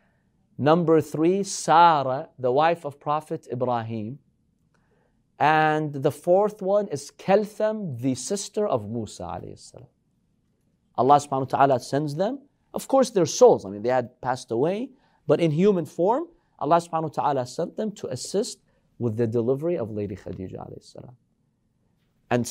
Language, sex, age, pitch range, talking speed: English, male, 40-59, 120-165 Hz, 140 wpm